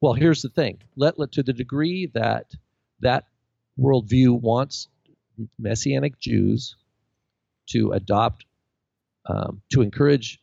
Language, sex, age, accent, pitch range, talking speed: English, male, 50-69, American, 100-130 Hz, 105 wpm